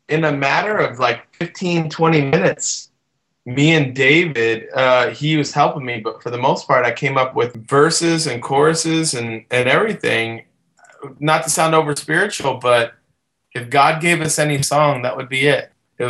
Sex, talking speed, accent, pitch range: male, 180 wpm, American, 135-170 Hz